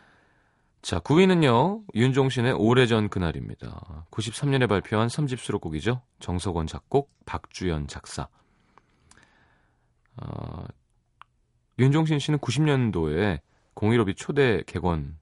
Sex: male